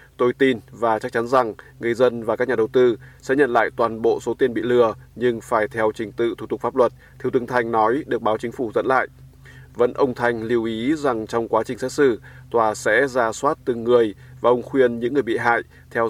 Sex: male